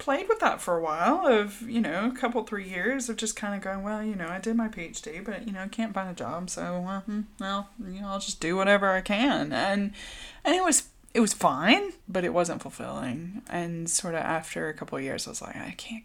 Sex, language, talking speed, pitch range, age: female, English, 255 wpm, 160-210 Hz, 20-39